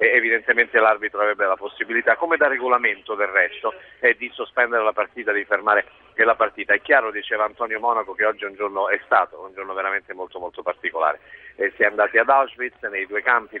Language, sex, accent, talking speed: Italian, male, native, 200 wpm